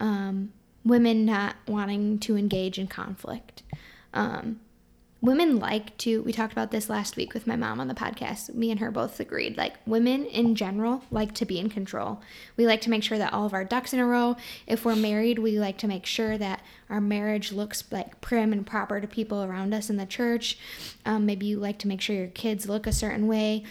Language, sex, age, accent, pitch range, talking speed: English, female, 10-29, American, 200-225 Hz, 220 wpm